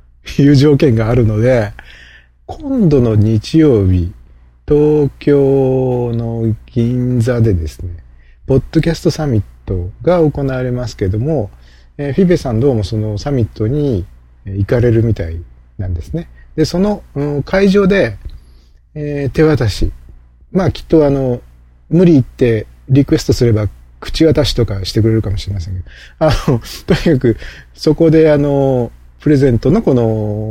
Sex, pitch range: male, 85-130 Hz